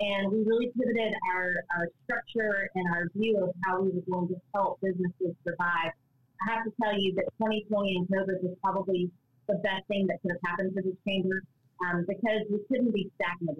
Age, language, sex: 30-49, English, female